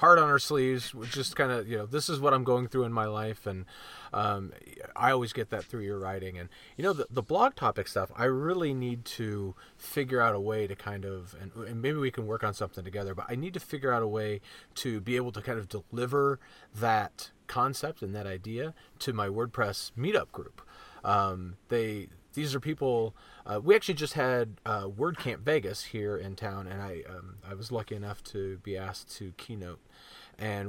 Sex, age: male, 30-49